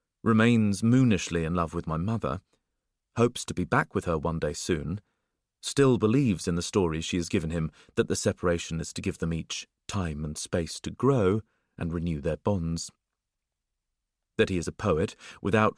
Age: 40-59